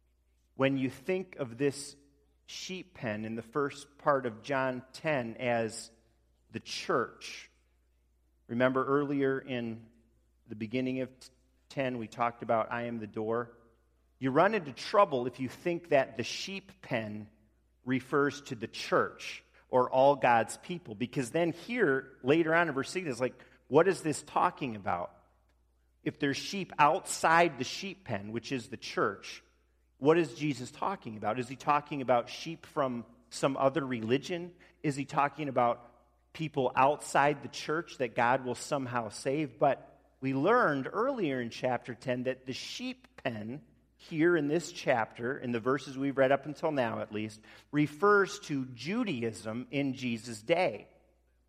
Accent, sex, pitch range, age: American, male, 115-145 Hz, 40-59